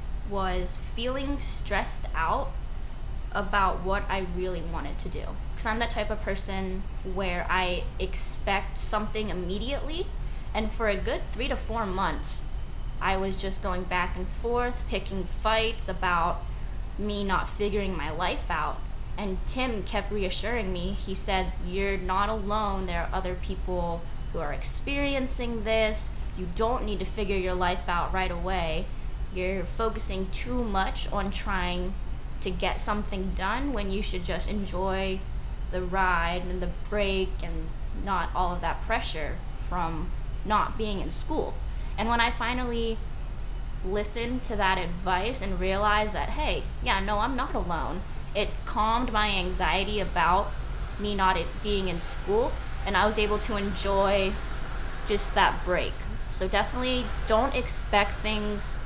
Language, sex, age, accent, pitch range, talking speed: English, female, 10-29, American, 185-215 Hz, 150 wpm